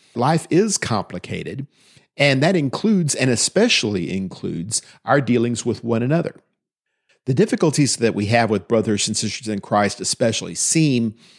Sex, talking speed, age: male, 140 wpm, 50-69